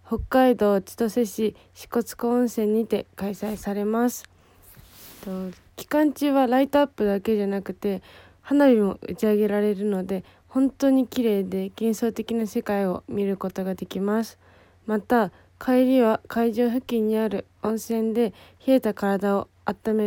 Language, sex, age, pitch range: Japanese, female, 20-39, 200-230 Hz